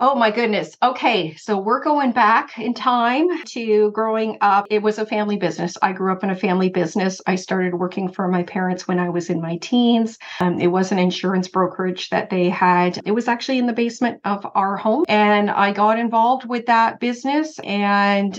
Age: 40-59